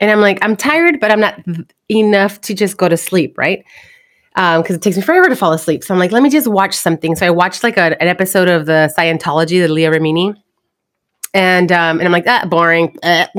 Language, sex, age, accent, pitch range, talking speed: English, female, 30-49, American, 175-225 Hz, 240 wpm